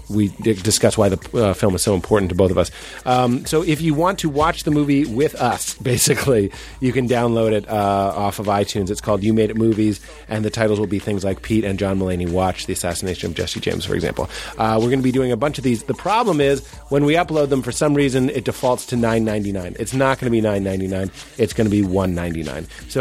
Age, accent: 30-49, American